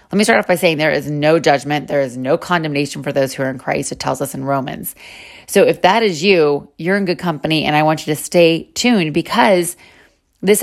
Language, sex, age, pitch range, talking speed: English, female, 30-49, 150-190 Hz, 245 wpm